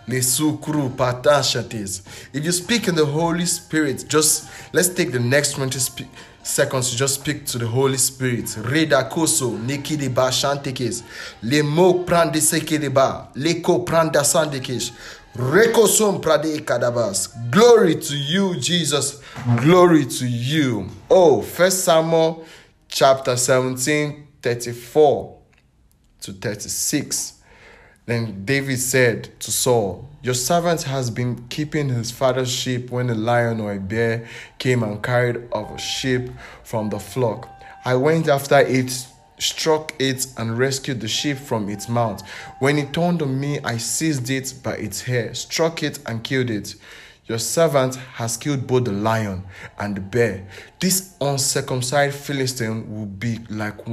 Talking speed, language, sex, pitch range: 120 wpm, English, male, 115-150 Hz